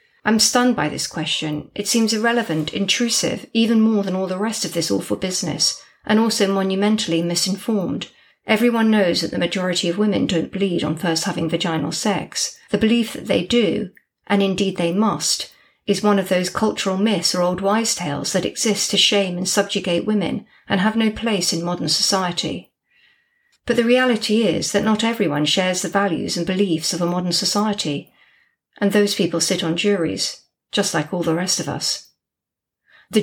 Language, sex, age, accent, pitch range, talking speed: English, female, 50-69, British, 175-215 Hz, 180 wpm